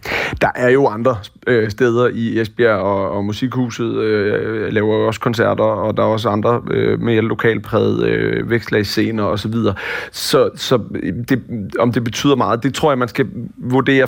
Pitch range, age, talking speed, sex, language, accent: 110-125 Hz, 30-49, 175 wpm, male, Danish, native